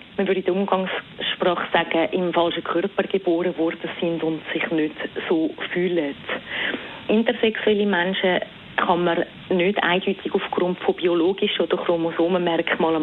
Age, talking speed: 30-49, 130 wpm